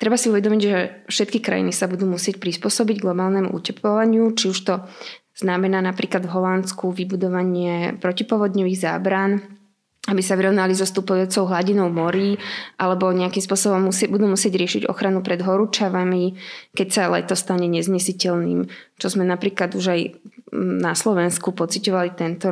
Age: 20-39